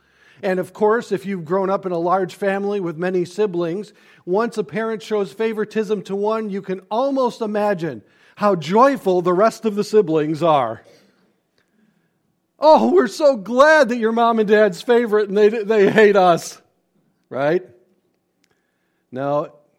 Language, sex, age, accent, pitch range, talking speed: English, male, 50-69, American, 140-205 Hz, 150 wpm